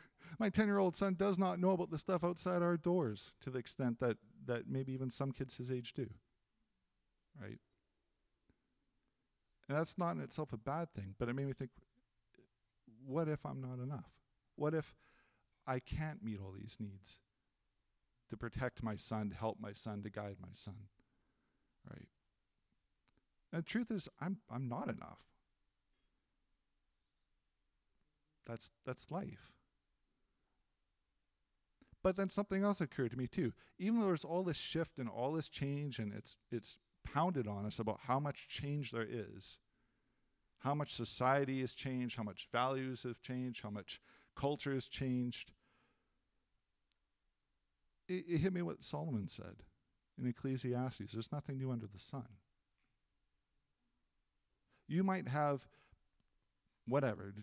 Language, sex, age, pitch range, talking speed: English, male, 40-59, 110-150 Hz, 145 wpm